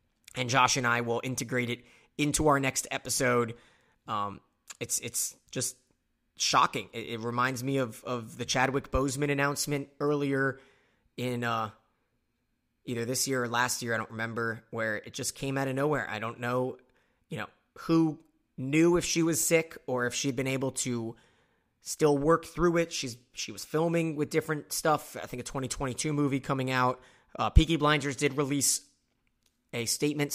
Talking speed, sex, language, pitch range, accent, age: 170 wpm, male, English, 120-145 Hz, American, 30-49